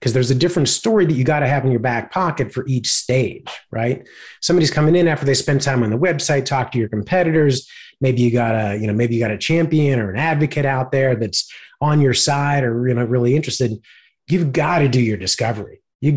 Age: 30-49